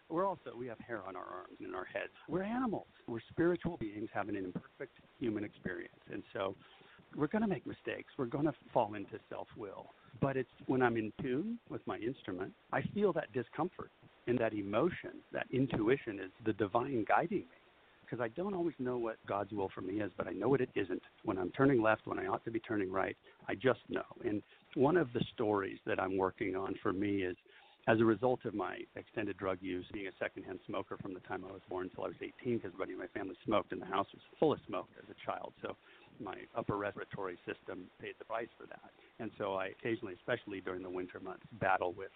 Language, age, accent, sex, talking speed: English, 60-79, American, male, 230 wpm